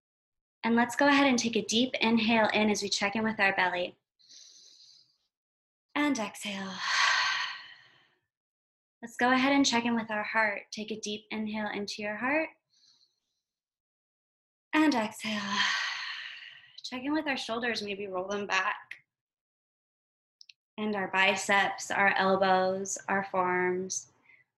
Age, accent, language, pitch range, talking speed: 20-39, American, English, 205-260 Hz, 130 wpm